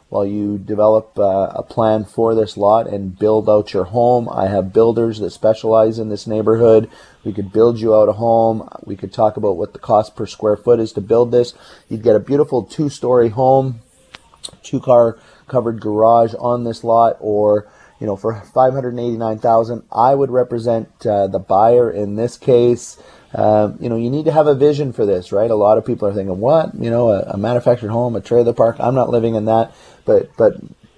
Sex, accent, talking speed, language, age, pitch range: male, American, 205 wpm, English, 30-49, 105-120 Hz